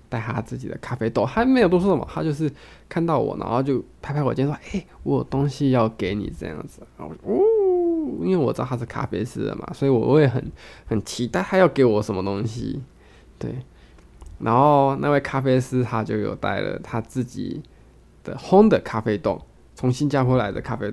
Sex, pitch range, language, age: male, 115-160 Hz, Chinese, 20-39